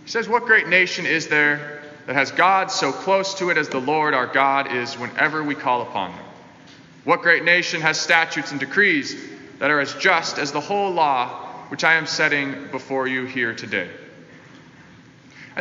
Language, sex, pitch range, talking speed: English, male, 140-170 Hz, 190 wpm